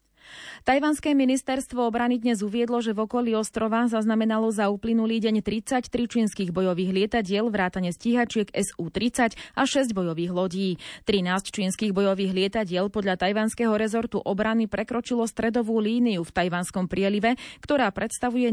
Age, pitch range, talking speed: 30-49, 190-235 Hz, 130 wpm